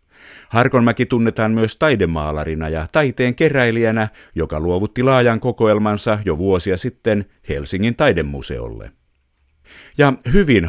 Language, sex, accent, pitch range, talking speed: Finnish, male, native, 80-110 Hz, 100 wpm